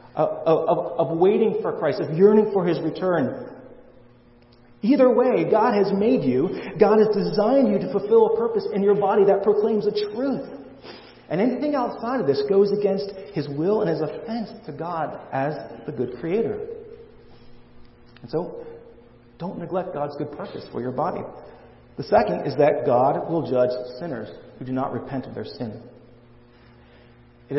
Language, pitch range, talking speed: English, 130-200 Hz, 165 wpm